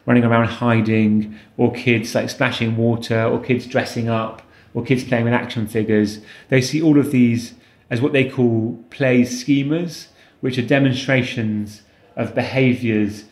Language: English